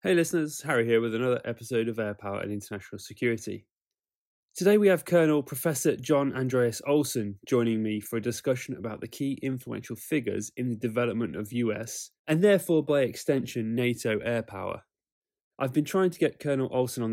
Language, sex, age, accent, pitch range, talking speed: English, male, 20-39, British, 110-140 Hz, 180 wpm